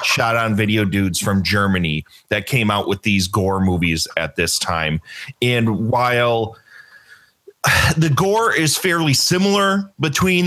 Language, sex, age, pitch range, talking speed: English, male, 30-49, 105-160 Hz, 140 wpm